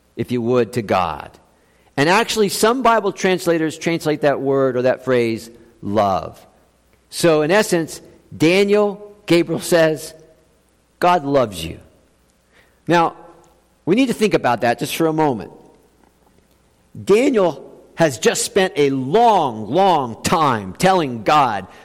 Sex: male